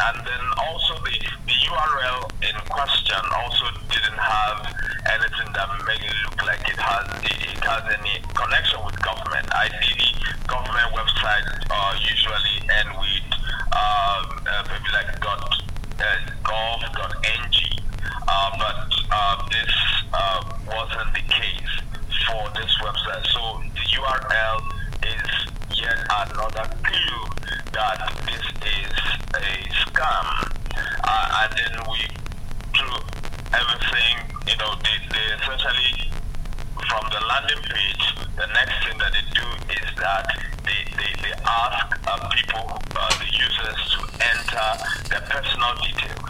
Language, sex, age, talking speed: English, male, 30-49, 125 wpm